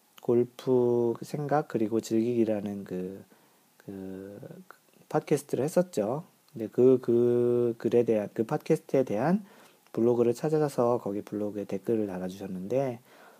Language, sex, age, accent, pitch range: Korean, male, 40-59, native, 100-140 Hz